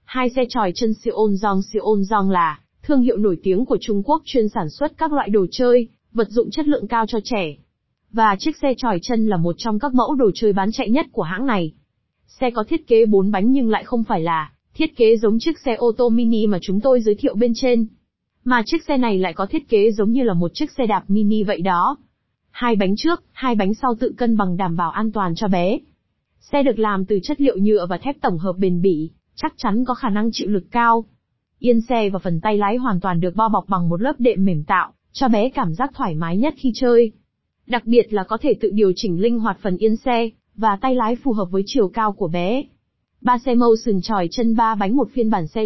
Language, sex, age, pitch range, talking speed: Vietnamese, female, 20-39, 195-250 Hz, 245 wpm